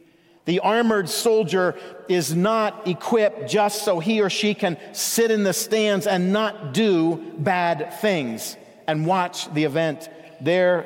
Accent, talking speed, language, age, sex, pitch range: American, 145 wpm, English, 50-69, male, 170-225 Hz